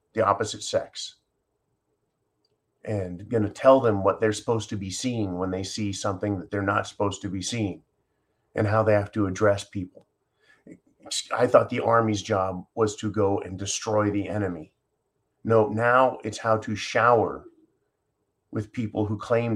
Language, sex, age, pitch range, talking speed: English, male, 30-49, 100-120 Hz, 165 wpm